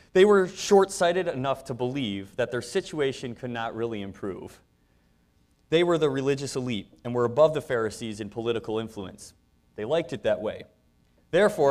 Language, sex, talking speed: English, male, 165 wpm